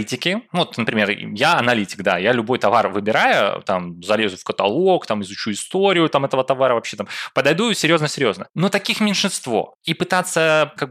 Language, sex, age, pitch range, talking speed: Russian, male, 20-39, 110-160 Hz, 160 wpm